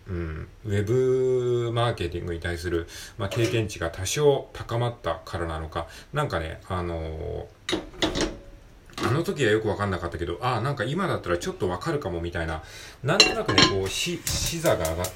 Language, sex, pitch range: Japanese, male, 85-120 Hz